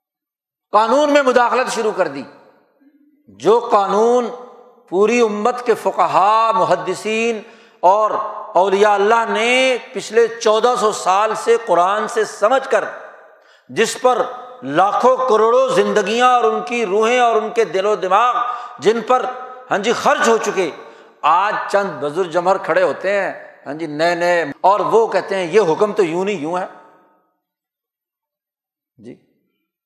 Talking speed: 145 wpm